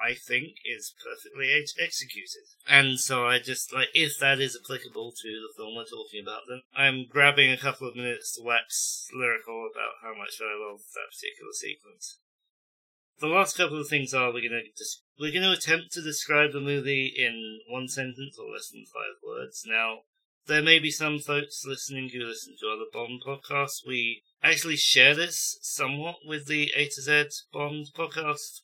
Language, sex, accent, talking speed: English, male, British, 190 wpm